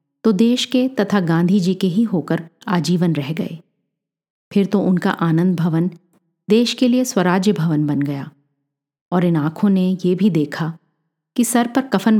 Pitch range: 165-205 Hz